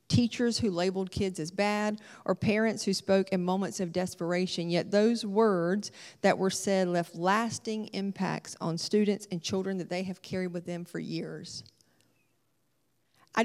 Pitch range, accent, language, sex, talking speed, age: 175-210 Hz, American, English, female, 160 wpm, 40-59